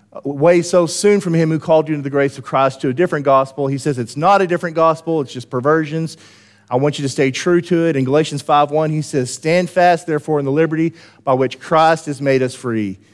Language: English